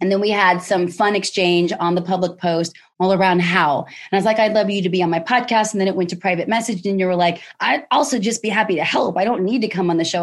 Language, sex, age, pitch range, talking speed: English, female, 30-49, 175-225 Hz, 305 wpm